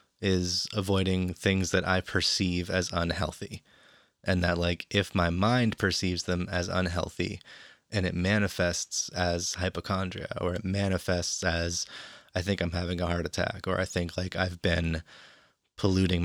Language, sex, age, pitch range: English, male, 20-39, 85-100 Hz